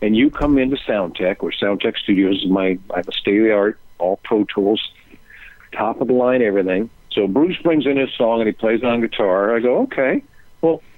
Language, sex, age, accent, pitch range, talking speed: English, male, 50-69, American, 110-140 Hz, 225 wpm